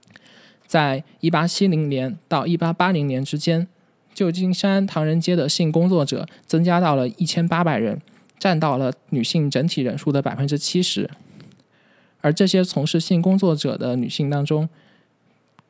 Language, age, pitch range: Chinese, 20-39, 135-175 Hz